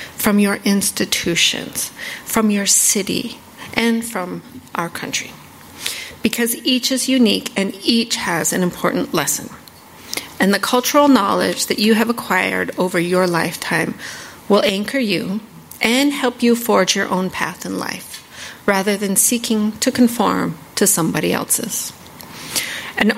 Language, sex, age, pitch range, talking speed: English, female, 40-59, 195-255 Hz, 135 wpm